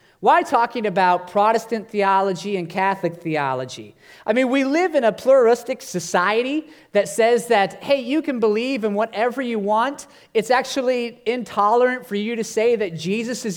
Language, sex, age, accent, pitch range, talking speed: English, male, 30-49, American, 200-250 Hz, 165 wpm